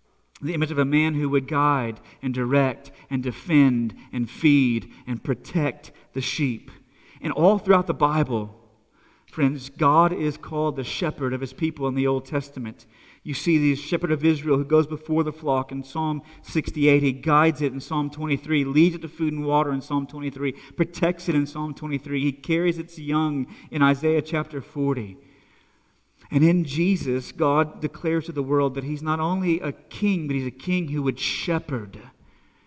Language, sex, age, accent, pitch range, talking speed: English, male, 40-59, American, 140-165 Hz, 180 wpm